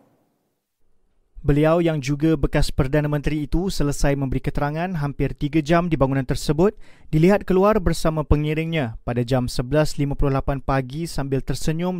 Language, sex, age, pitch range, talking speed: Malay, male, 30-49, 140-170 Hz, 130 wpm